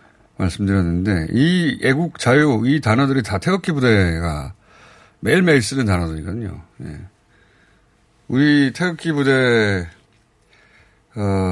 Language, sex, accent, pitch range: Korean, male, native, 95-135 Hz